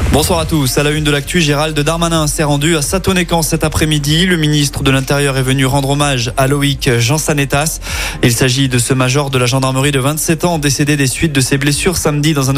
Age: 20-39